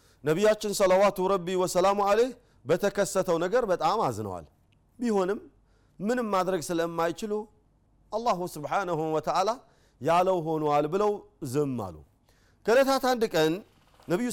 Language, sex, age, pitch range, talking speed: Amharic, male, 40-59, 150-205 Hz, 105 wpm